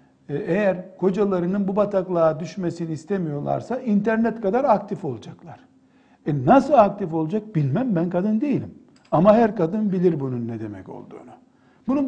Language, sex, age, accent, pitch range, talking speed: Turkish, male, 60-79, native, 160-215 Hz, 135 wpm